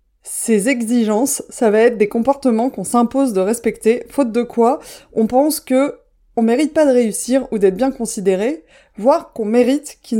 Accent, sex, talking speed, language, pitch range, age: French, female, 175 wpm, French, 215-275 Hz, 20-39